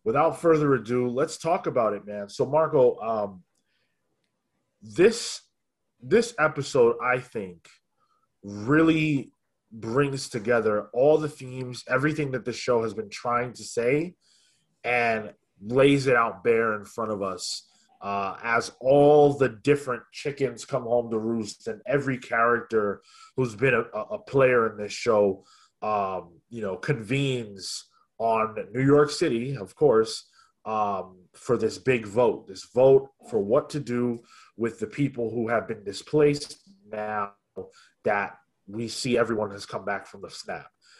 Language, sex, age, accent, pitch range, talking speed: English, male, 20-39, American, 115-145 Hz, 145 wpm